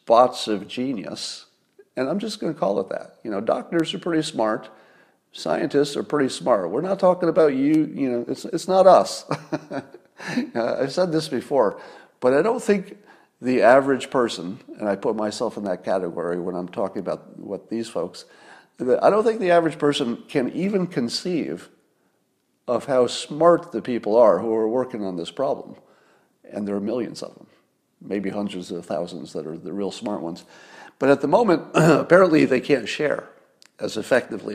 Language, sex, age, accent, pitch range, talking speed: English, male, 50-69, American, 105-160 Hz, 175 wpm